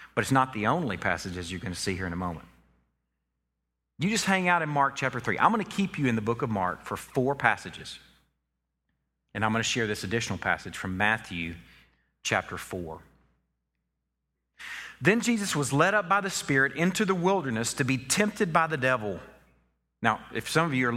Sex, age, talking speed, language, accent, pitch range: male, 40-59, 200 wpm, English, American, 95-155 Hz